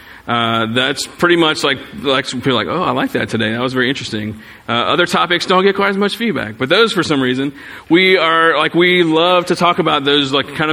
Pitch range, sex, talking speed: 125-155 Hz, male, 235 wpm